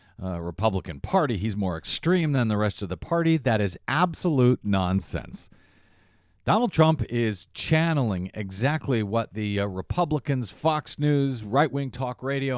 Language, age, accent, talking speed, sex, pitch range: English, 40-59, American, 145 wpm, male, 95-135 Hz